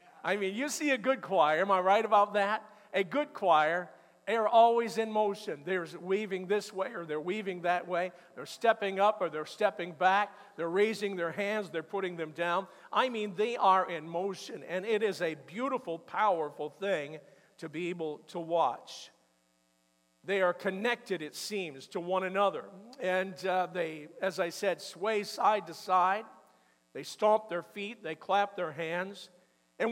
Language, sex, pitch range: English, male, 170-220 Hz